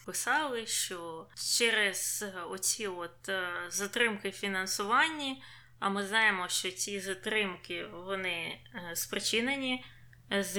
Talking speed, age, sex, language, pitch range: 90 wpm, 20-39, female, Ukrainian, 170-200 Hz